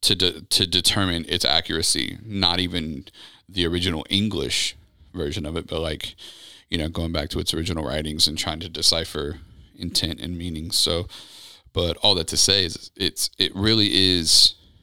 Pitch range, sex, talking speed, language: 85-100 Hz, male, 165 wpm, English